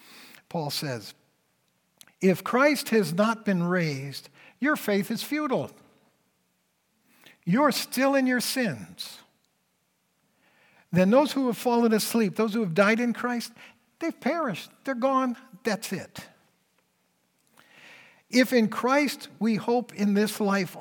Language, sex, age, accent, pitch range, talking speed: English, male, 60-79, American, 165-225 Hz, 125 wpm